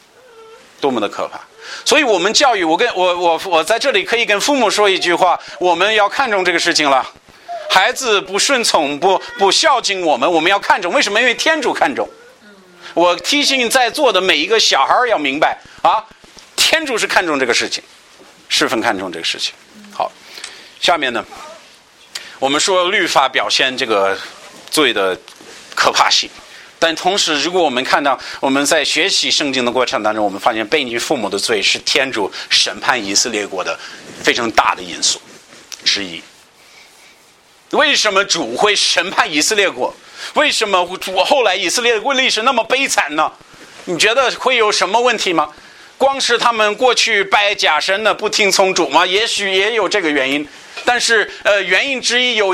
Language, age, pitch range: Chinese, 50-69, 180-250 Hz